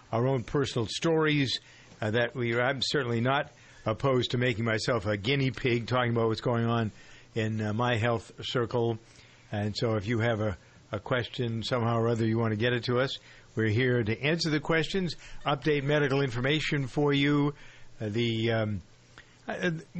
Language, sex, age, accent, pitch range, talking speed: English, male, 60-79, American, 115-135 Hz, 180 wpm